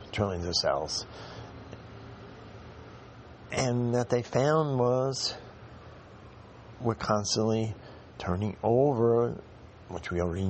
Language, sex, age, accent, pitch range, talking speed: English, male, 50-69, American, 95-120 Hz, 85 wpm